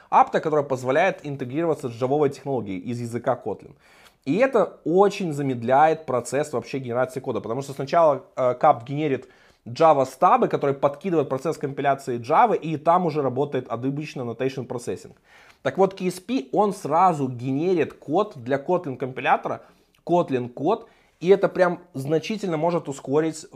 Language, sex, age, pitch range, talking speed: Russian, male, 20-39, 130-155 Hz, 140 wpm